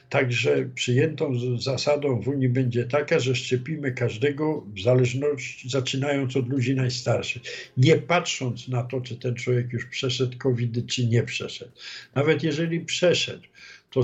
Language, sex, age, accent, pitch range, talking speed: Polish, male, 60-79, native, 120-140 Hz, 140 wpm